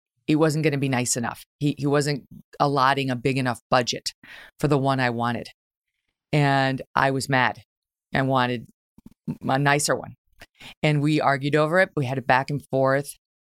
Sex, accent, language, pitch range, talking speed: female, American, English, 120-150 Hz, 180 wpm